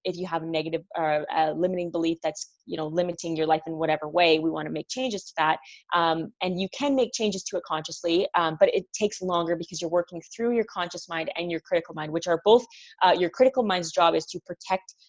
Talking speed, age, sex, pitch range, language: 245 wpm, 20-39, female, 165-195 Hz, English